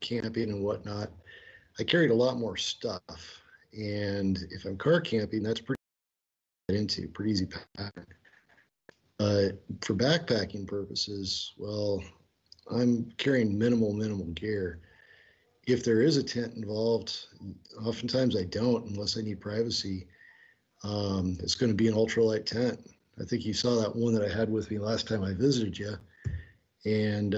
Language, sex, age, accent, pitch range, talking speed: English, male, 40-59, American, 95-115 Hz, 155 wpm